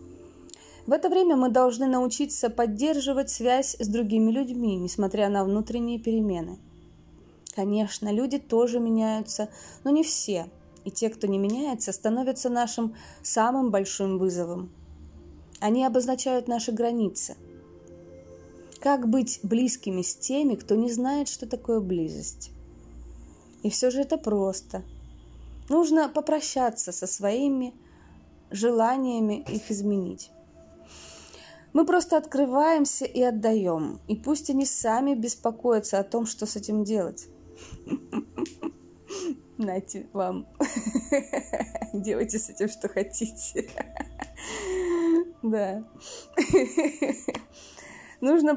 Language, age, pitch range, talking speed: Russian, 20-39, 200-260 Hz, 105 wpm